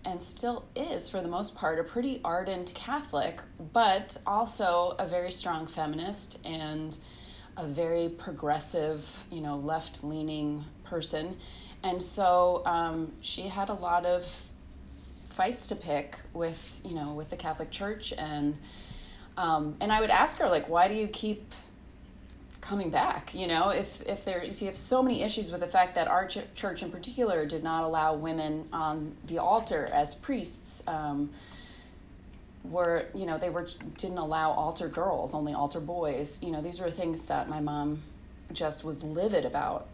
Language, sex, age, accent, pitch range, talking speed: English, female, 30-49, American, 150-180 Hz, 165 wpm